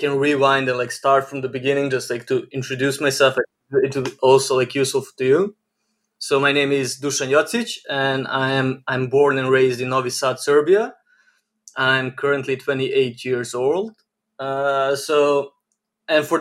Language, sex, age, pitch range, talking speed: English, male, 20-39, 130-150 Hz, 165 wpm